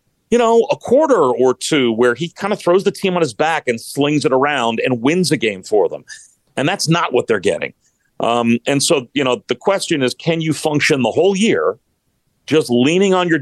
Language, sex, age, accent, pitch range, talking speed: English, male, 40-59, American, 125-170 Hz, 225 wpm